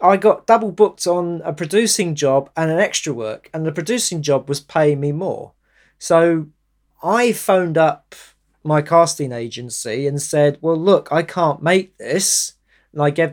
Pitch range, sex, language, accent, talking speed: 145-195 Hz, male, English, British, 170 wpm